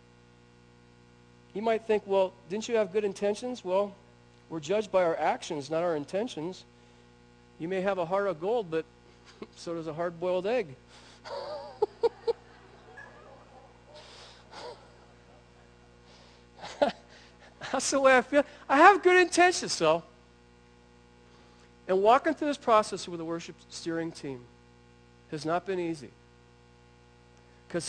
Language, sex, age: English, male, 50-69